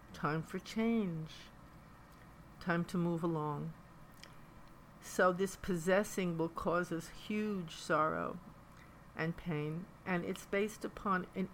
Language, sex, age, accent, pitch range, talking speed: English, female, 50-69, American, 160-200 Hz, 115 wpm